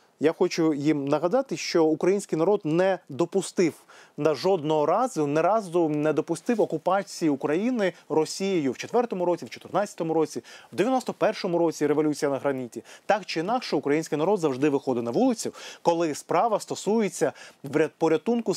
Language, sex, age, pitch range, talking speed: Ukrainian, male, 30-49, 150-195 Hz, 140 wpm